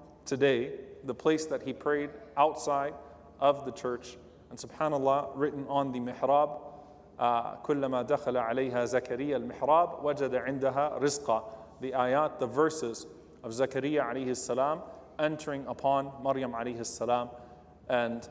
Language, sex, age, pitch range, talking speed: English, male, 30-49, 130-165 Hz, 110 wpm